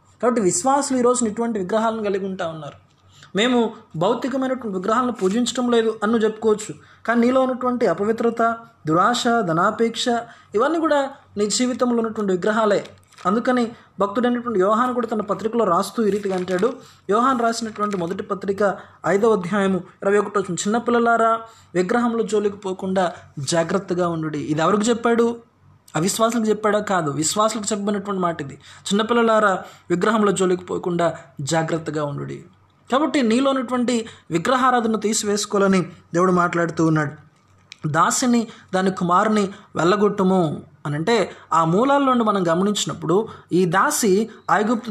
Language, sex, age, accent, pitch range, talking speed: Telugu, male, 20-39, native, 180-230 Hz, 110 wpm